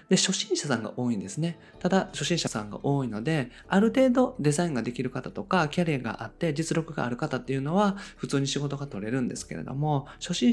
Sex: male